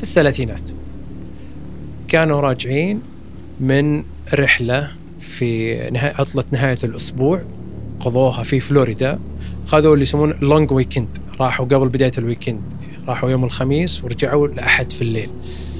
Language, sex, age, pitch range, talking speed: Arabic, male, 30-49, 110-145 Hz, 110 wpm